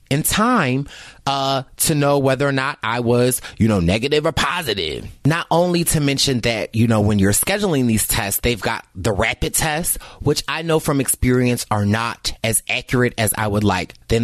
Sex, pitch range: male, 110-140 Hz